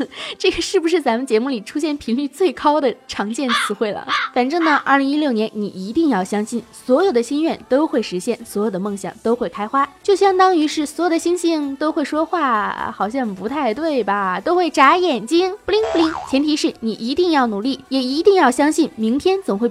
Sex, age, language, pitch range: female, 20-39, Chinese, 235-340 Hz